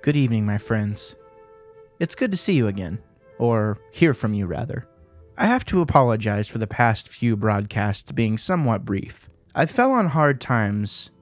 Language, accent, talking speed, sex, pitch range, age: English, American, 170 wpm, male, 110-145 Hz, 20-39